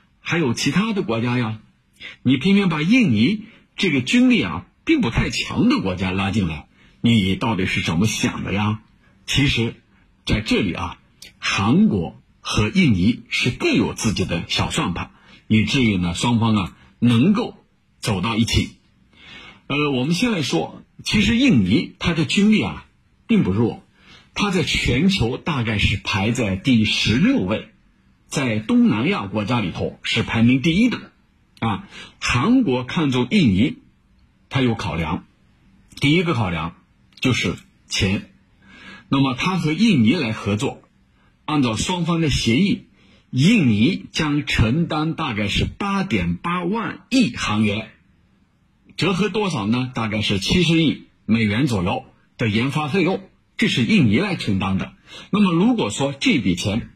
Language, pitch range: Chinese, 105-180 Hz